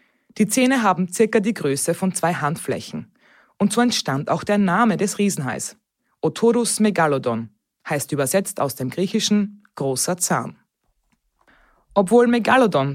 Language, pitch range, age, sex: German, 145-210 Hz, 20-39, female